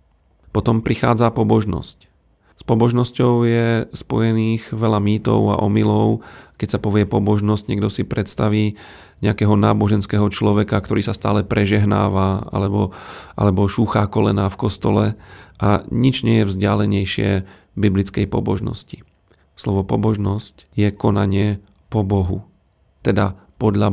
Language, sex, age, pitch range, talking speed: Slovak, male, 40-59, 100-115 Hz, 115 wpm